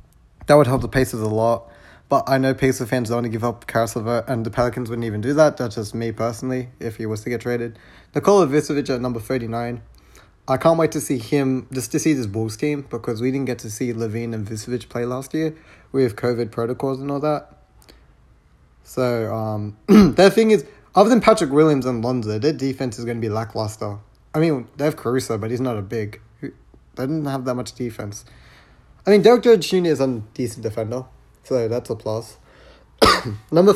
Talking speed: 210 wpm